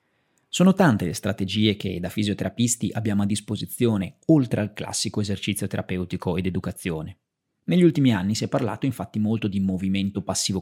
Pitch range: 100-130 Hz